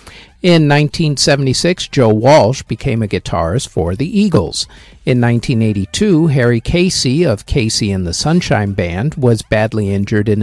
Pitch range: 110-155 Hz